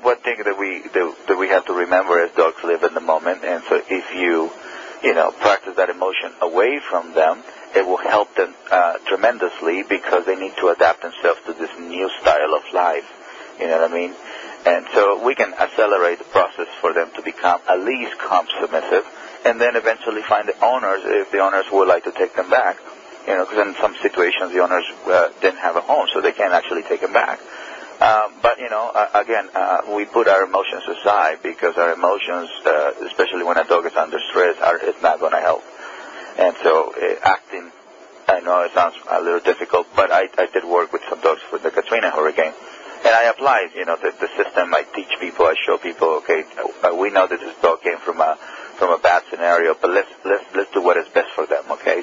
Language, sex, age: English, male, 40-59